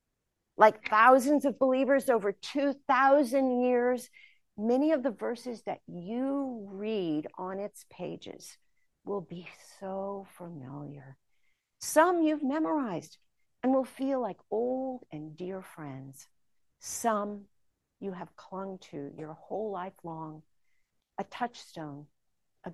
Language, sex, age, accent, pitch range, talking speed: English, female, 50-69, American, 170-270 Hz, 115 wpm